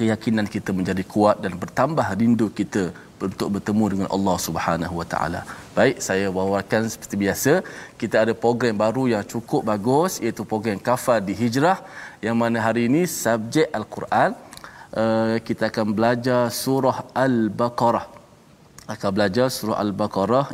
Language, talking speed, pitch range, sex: Malayalam, 135 wpm, 100-115 Hz, male